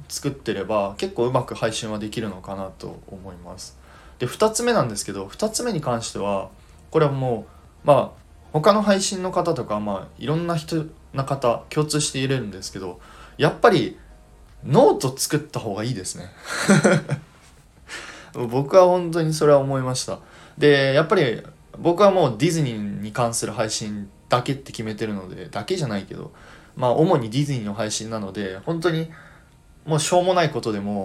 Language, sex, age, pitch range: Japanese, male, 20-39, 105-145 Hz